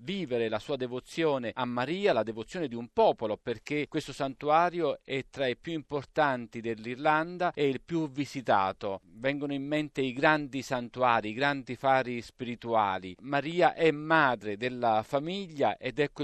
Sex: male